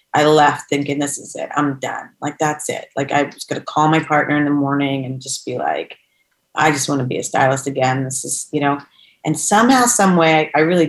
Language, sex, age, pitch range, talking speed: English, female, 30-49, 145-165 Hz, 240 wpm